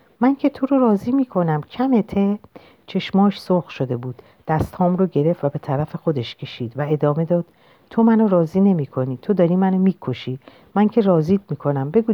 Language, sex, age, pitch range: Persian, female, 50-69, 135-195 Hz